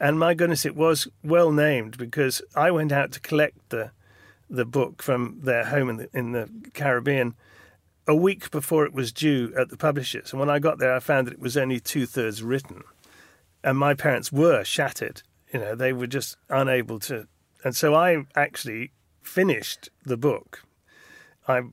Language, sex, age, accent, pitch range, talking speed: English, male, 40-59, British, 120-145 Hz, 185 wpm